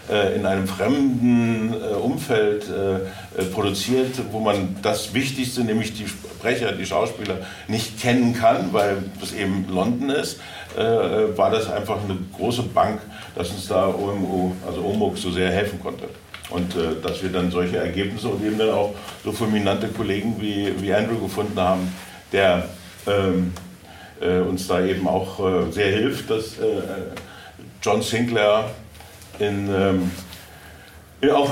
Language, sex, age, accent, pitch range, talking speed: German, male, 60-79, German, 95-120 Hz, 130 wpm